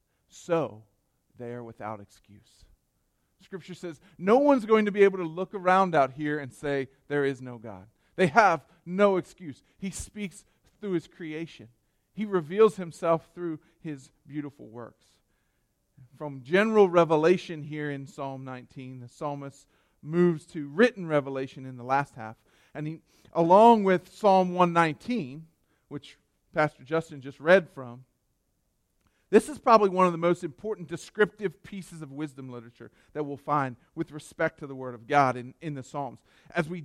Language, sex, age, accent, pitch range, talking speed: English, male, 40-59, American, 135-180 Hz, 160 wpm